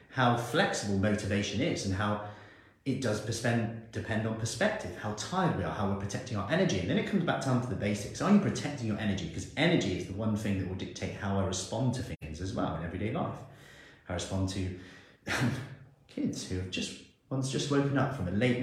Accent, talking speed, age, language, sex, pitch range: British, 220 wpm, 30-49, English, male, 95-130 Hz